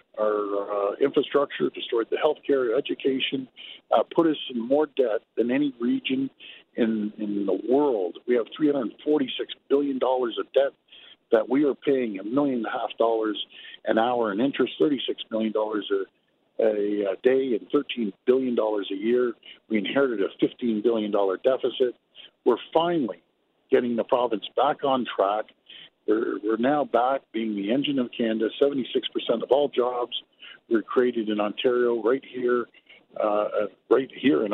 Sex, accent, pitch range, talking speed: male, American, 110-145 Hz, 155 wpm